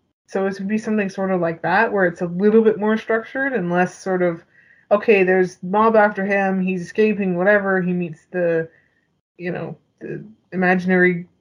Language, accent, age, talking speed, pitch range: English, American, 20-39, 185 wpm, 175-220 Hz